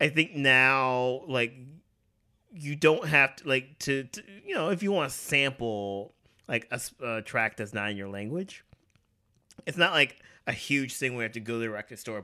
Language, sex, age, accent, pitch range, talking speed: English, male, 30-49, American, 110-140 Hz, 205 wpm